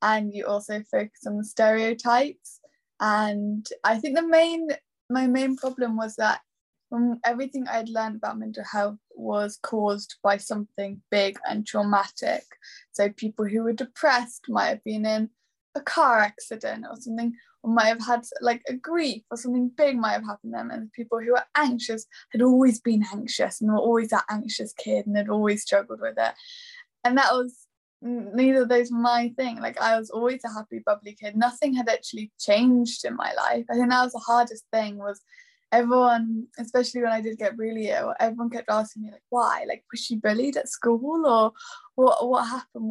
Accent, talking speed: British, 190 wpm